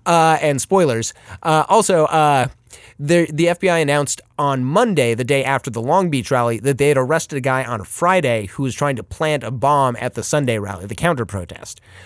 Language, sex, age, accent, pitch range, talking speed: English, male, 30-49, American, 125-155 Hz, 205 wpm